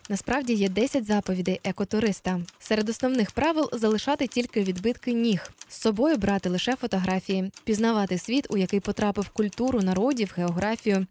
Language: Ukrainian